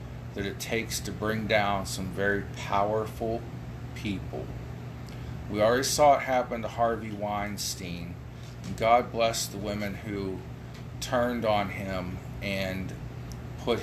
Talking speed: 125 wpm